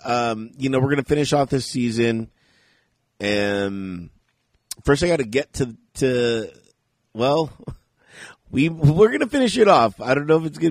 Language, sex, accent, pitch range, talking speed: English, male, American, 100-145 Hz, 180 wpm